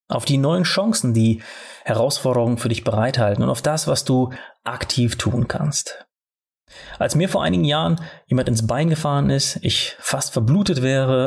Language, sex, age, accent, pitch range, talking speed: German, male, 30-49, German, 115-150 Hz, 165 wpm